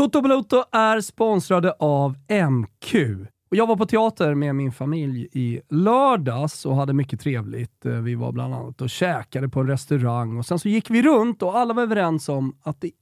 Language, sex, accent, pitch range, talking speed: Swedish, male, native, 125-190 Hz, 190 wpm